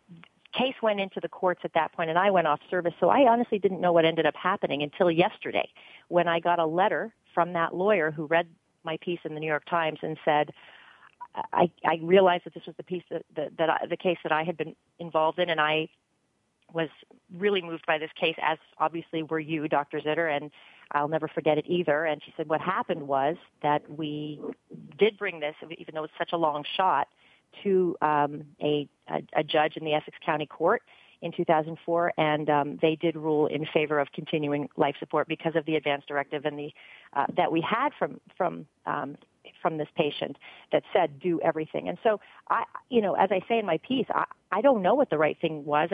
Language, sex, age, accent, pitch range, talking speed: English, female, 40-59, American, 155-180 Hz, 215 wpm